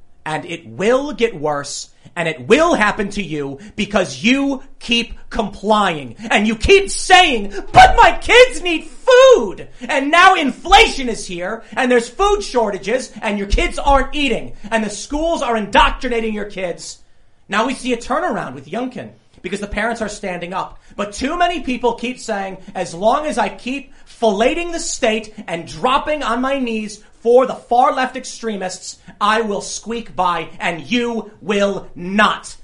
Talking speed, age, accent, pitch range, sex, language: 165 wpm, 30-49, American, 190-255 Hz, male, English